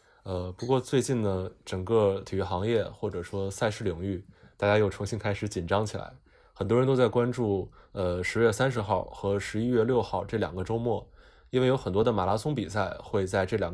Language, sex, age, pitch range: Chinese, male, 20-39, 95-115 Hz